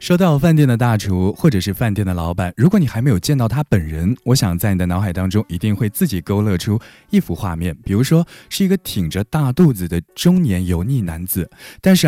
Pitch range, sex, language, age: 95-140 Hz, male, Chinese, 20-39